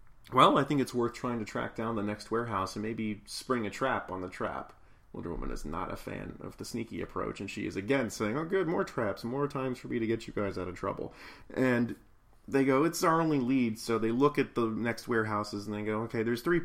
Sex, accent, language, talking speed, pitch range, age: male, American, English, 250 wpm, 105-135 Hz, 30-49